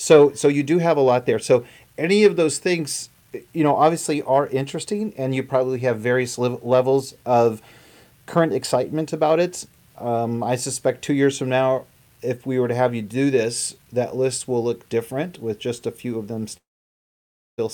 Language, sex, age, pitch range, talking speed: English, male, 30-49, 115-135 Hz, 190 wpm